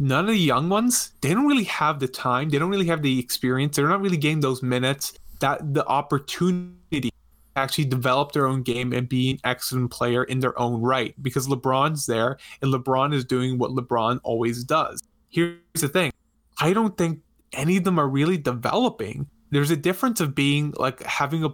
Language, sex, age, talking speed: English, male, 20-39, 200 wpm